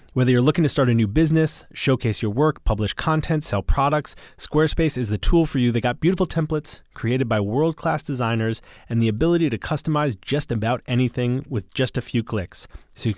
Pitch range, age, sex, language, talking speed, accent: 110-155 Hz, 30-49, male, English, 200 wpm, American